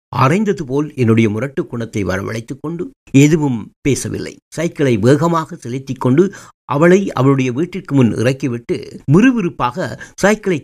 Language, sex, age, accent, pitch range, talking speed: Tamil, male, 60-79, native, 125-170 Hz, 105 wpm